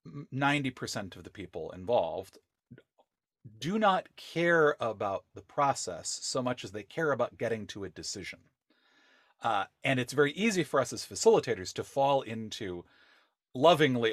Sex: male